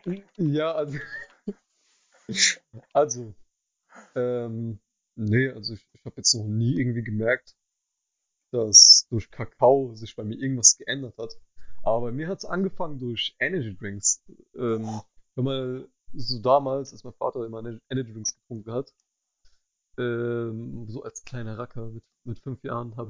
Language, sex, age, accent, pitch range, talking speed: German, male, 30-49, German, 115-135 Hz, 145 wpm